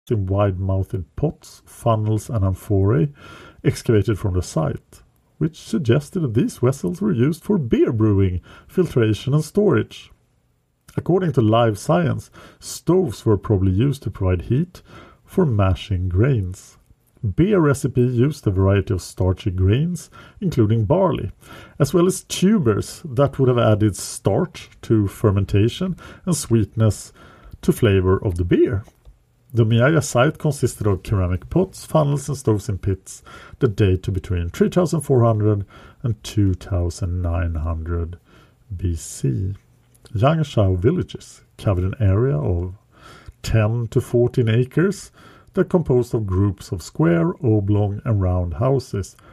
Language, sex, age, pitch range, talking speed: English, male, 50-69, 100-145 Hz, 125 wpm